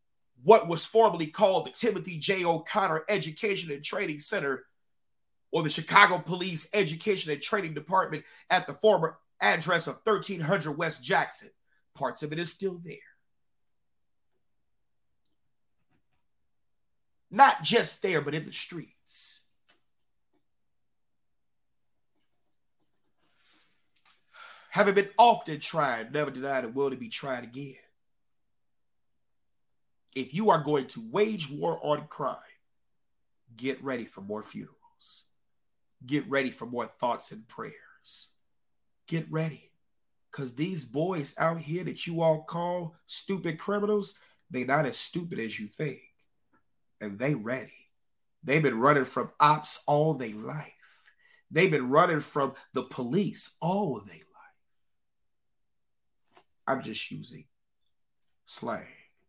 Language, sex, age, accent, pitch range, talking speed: English, male, 30-49, American, 145-195 Hz, 120 wpm